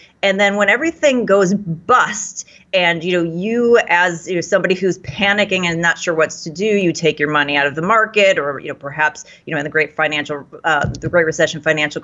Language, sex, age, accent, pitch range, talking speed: English, female, 30-49, American, 160-200 Hz, 215 wpm